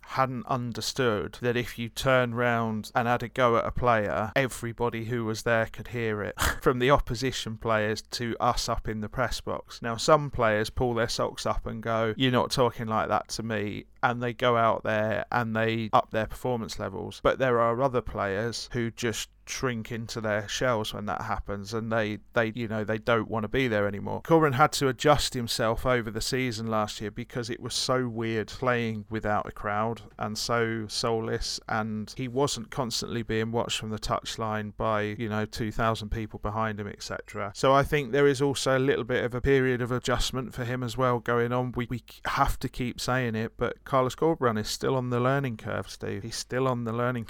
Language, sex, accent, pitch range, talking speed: English, male, British, 110-125 Hz, 210 wpm